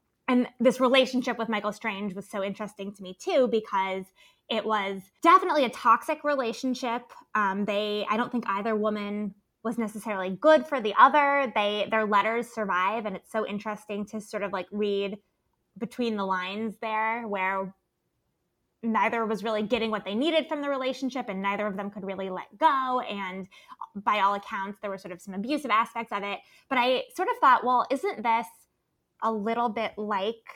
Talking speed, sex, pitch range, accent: 185 wpm, female, 200-250 Hz, American